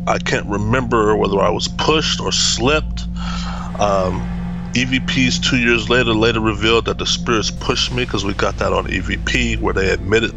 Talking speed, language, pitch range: 175 wpm, English, 90-115 Hz